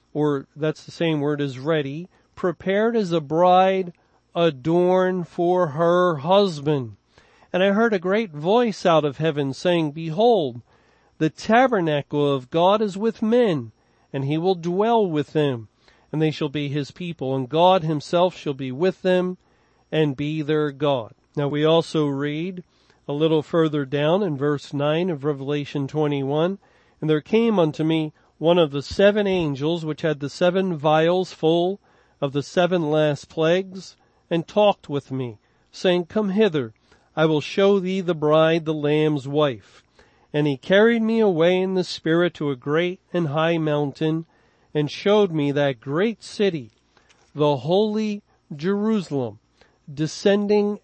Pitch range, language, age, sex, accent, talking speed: 145-185 Hz, English, 40-59, male, American, 155 wpm